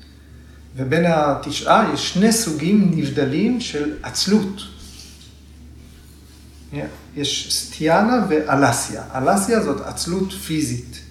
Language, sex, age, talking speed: Hebrew, male, 30-49, 80 wpm